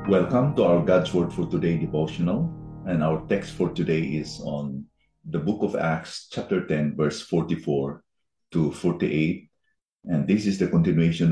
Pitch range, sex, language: 75-95 Hz, male, English